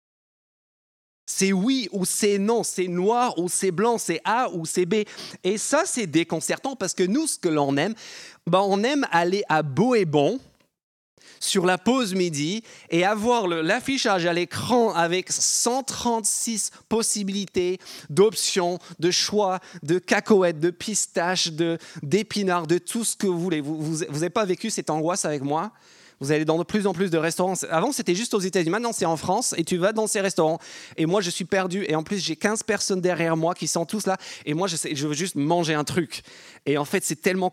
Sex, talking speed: male, 200 wpm